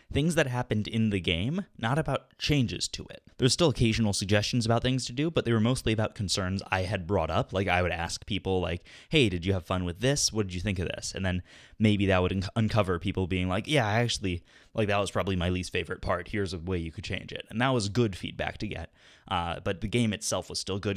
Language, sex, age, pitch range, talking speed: English, male, 20-39, 95-115 Hz, 260 wpm